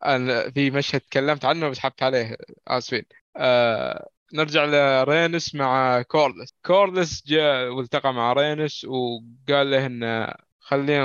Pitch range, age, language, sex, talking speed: 130-150 Hz, 20-39, Arabic, male, 115 wpm